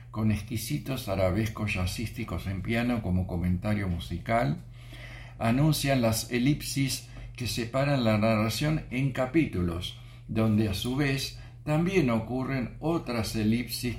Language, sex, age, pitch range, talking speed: Spanish, male, 60-79, 105-120 Hz, 110 wpm